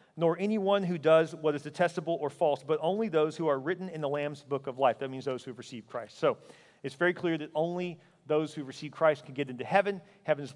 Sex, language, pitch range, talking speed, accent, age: male, English, 135-155 Hz, 255 wpm, American, 40-59